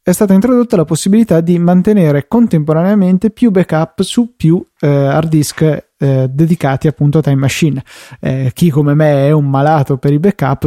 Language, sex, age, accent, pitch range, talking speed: Italian, male, 20-39, native, 140-170 Hz, 175 wpm